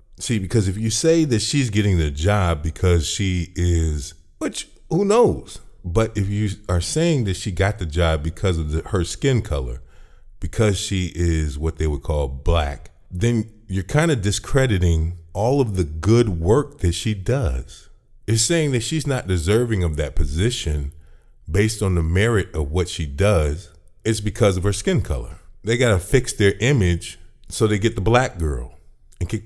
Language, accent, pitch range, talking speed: English, American, 85-115 Hz, 180 wpm